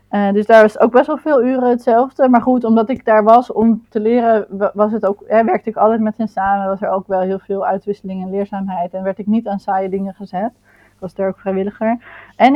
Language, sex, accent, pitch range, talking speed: Dutch, female, Dutch, 200-230 Hz, 250 wpm